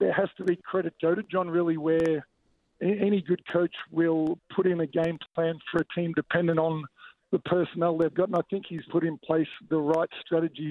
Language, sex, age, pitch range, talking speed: English, male, 50-69, 160-180 Hz, 215 wpm